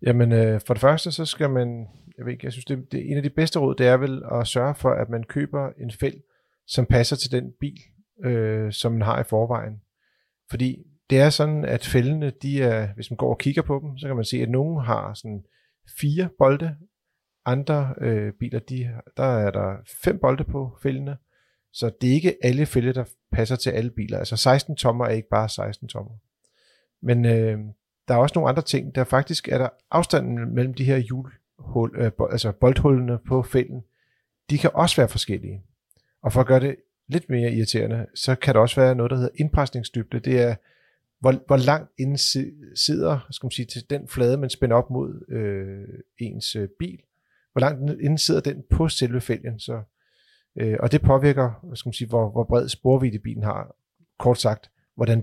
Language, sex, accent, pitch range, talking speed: Danish, male, native, 115-140 Hz, 200 wpm